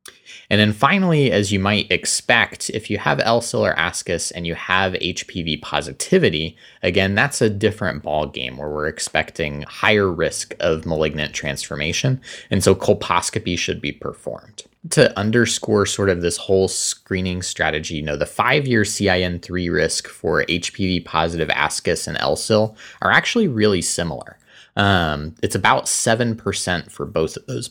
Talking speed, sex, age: 155 wpm, male, 20-39